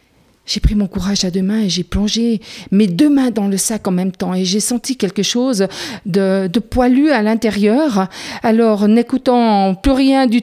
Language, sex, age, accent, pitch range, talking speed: French, female, 50-69, French, 230-325 Hz, 195 wpm